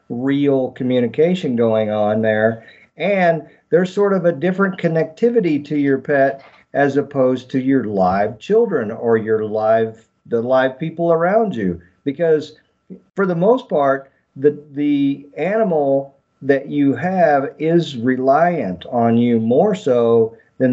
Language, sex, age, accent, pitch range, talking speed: English, male, 50-69, American, 115-150 Hz, 135 wpm